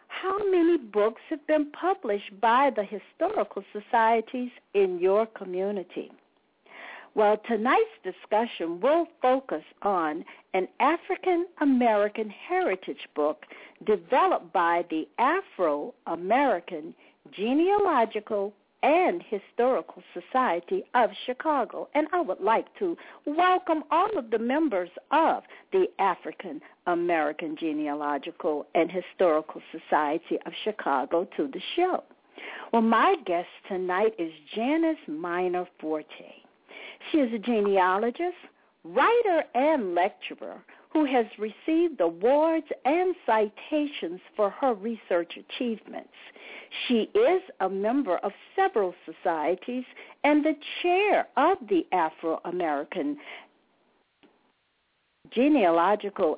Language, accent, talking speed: English, American, 105 wpm